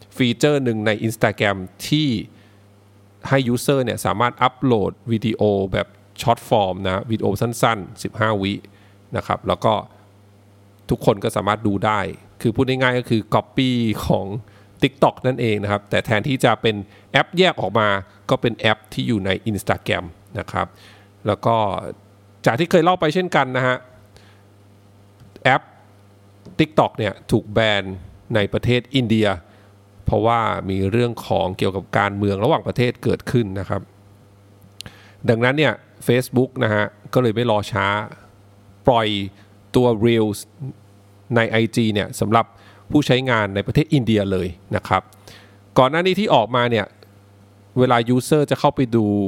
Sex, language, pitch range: male, English, 100-120 Hz